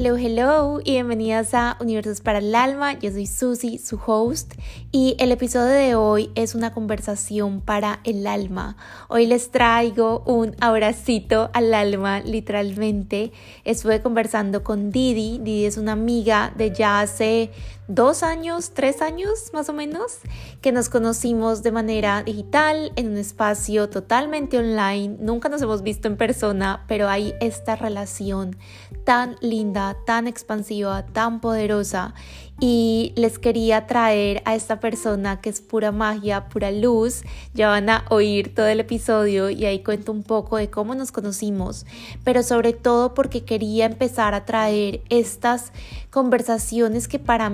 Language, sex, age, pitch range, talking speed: Spanish, female, 20-39, 210-240 Hz, 150 wpm